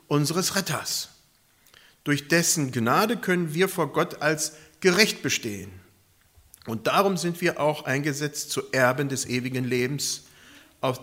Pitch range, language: 115-170 Hz, German